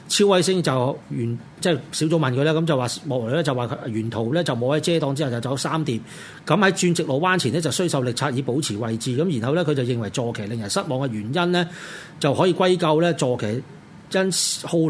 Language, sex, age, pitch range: Chinese, male, 40-59, 130-180 Hz